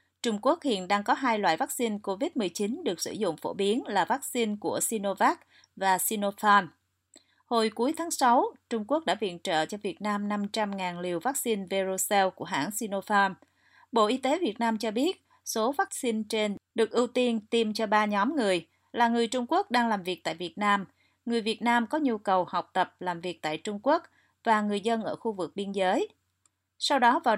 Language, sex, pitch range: Vietnamese, female, 190-240 Hz